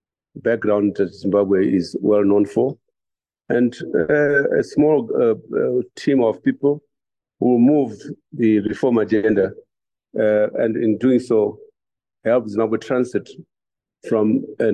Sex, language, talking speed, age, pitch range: male, English, 125 wpm, 50-69, 100-125 Hz